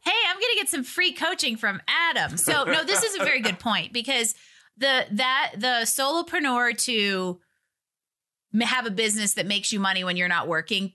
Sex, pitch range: female, 170-215 Hz